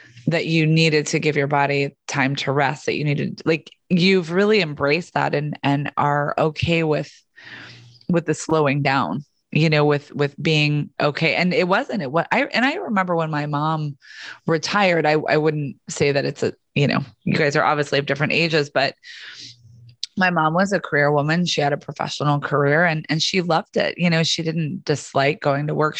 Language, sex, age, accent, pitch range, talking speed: English, female, 20-39, American, 145-165 Hz, 200 wpm